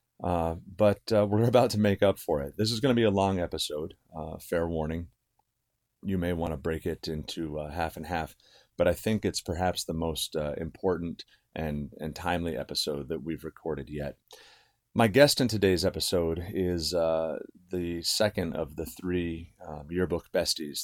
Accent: American